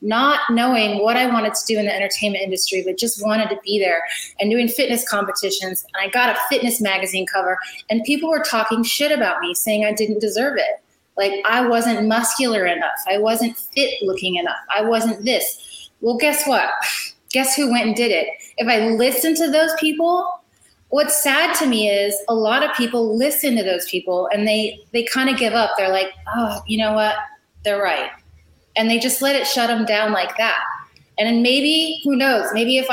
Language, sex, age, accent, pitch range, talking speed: English, female, 30-49, American, 205-255 Hz, 205 wpm